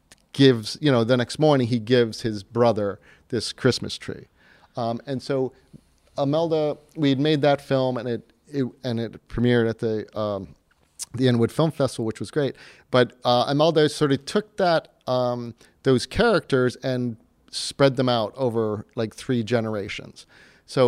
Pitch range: 110-130 Hz